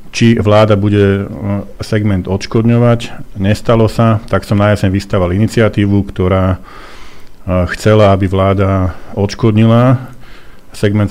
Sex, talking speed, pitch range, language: male, 105 wpm, 100-115 Hz, Slovak